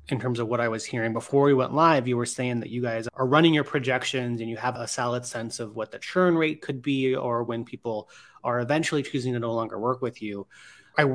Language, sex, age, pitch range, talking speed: English, male, 30-49, 120-145 Hz, 255 wpm